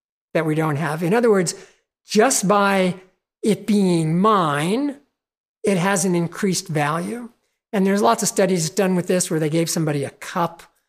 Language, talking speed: English, 170 wpm